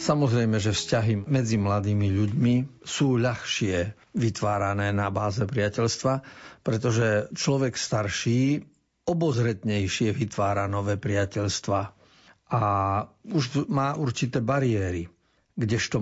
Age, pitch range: 60-79, 105-130 Hz